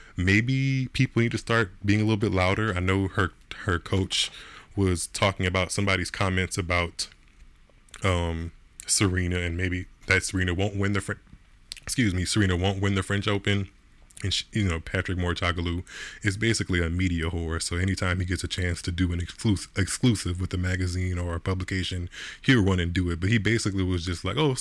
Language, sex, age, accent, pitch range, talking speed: English, male, 20-39, American, 90-105 Hz, 195 wpm